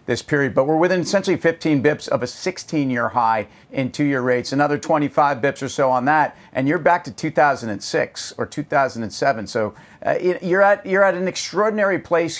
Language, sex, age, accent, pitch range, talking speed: English, male, 50-69, American, 135-160 Hz, 185 wpm